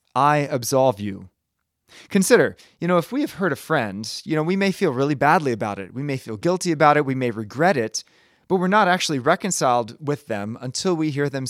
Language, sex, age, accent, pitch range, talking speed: English, male, 30-49, American, 125-165 Hz, 220 wpm